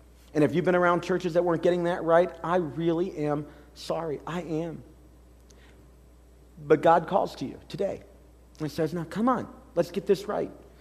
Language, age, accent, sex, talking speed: English, 40-59, American, male, 180 wpm